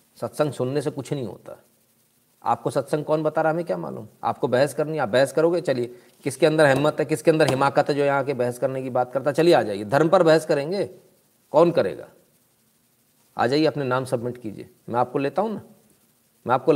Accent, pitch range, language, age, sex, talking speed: native, 135-190 Hz, Hindi, 40-59, male, 220 wpm